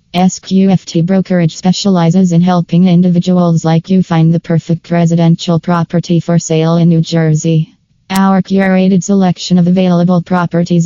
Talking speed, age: 135 wpm, 20-39